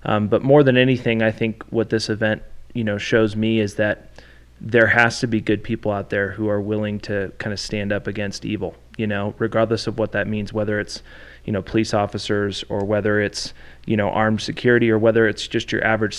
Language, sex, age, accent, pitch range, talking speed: English, male, 20-39, American, 105-120 Hz, 220 wpm